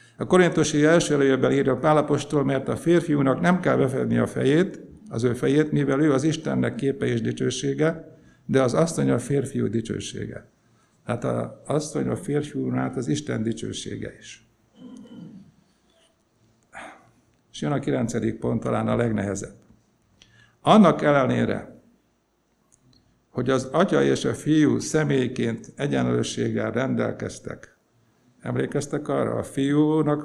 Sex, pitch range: male, 115-150 Hz